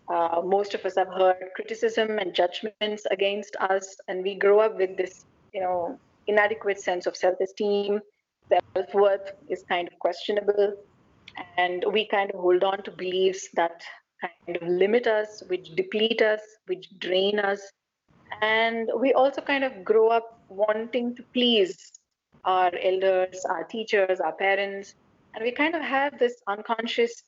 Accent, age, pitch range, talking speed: Indian, 30-49, 185-235 Hz, 155 wpm